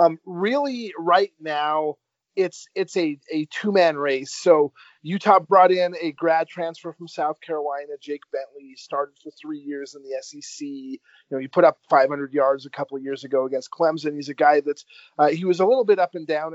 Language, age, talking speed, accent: English, 40-59, 210 wpm, American